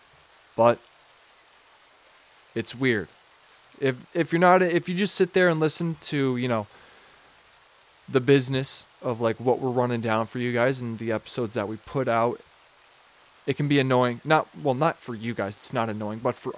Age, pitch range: 20-39, 120-145 Hz